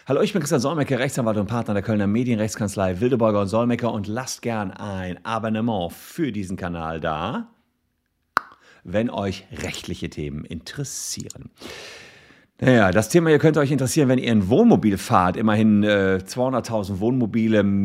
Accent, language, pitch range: German, German, 100-125 Hz